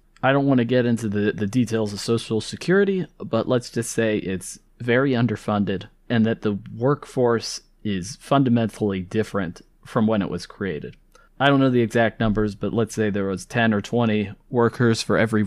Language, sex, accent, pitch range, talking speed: English, male, American, 105-125 Hz, 185 wpm